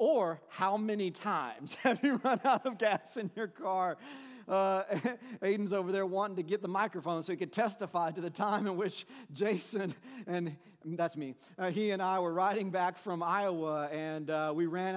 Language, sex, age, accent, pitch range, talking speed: English, male, 40-59, American, 145-190 Hz, 195 wpm